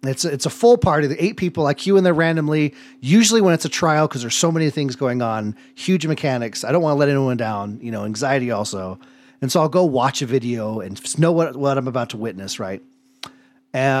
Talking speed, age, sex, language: 245 wpm, 30-49, male, English